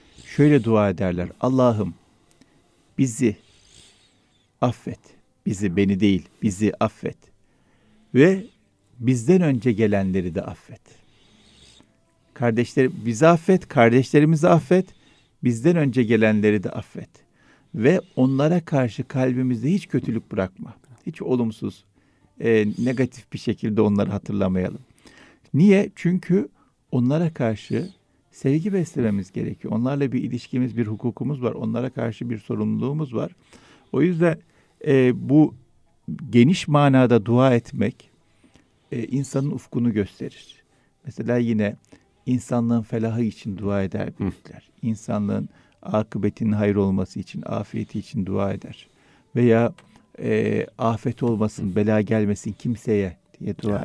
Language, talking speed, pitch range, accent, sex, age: Turkish, 110 wpm, 105-135 Hz, native, male, 50-69